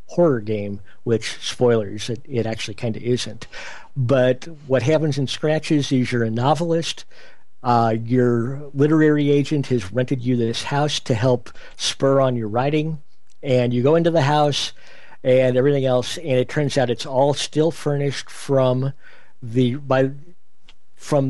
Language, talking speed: English, 155 wpm